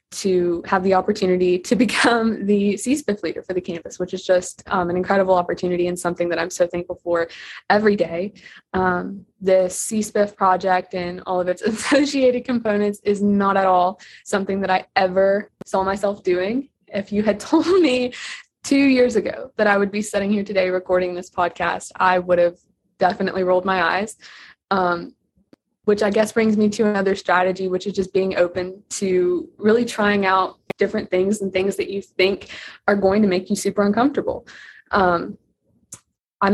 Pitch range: 185-210 Hz